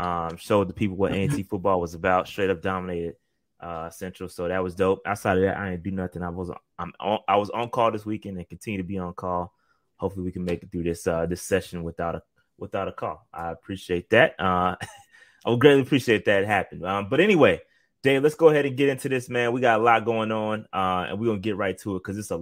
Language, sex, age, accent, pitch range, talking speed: English, male, 20-39, American, 90-115 Hz, 255 wpm